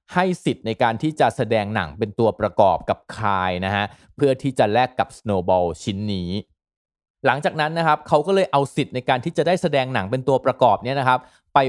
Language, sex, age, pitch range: Thai, male, 20-39, 105-140 Hz